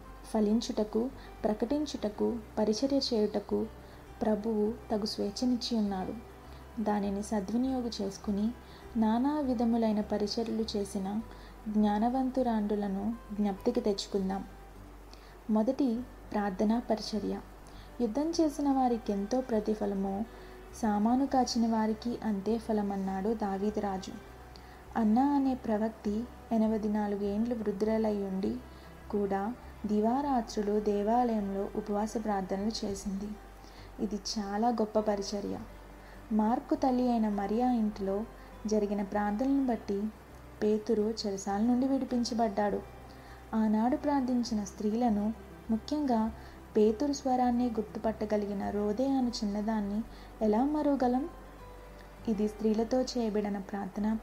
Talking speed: 85 wpm